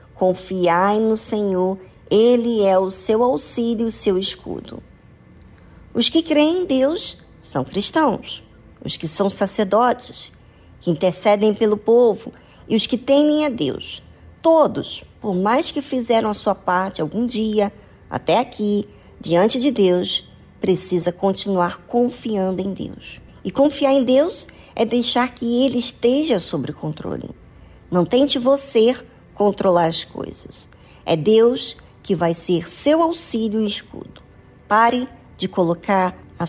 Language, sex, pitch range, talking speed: Portuguese, male, 180-240 Hz, 135 wpm